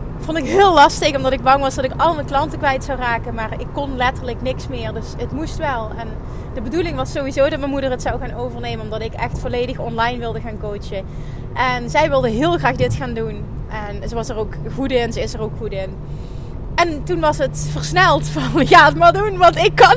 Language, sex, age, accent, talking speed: Dutch, female, 30-49, Dutch, 240 wpm